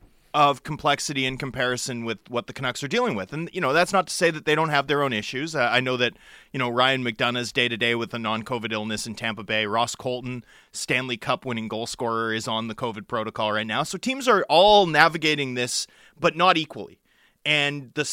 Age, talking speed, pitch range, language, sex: 30-49, 225 wpm, 130-180 Hz, English, male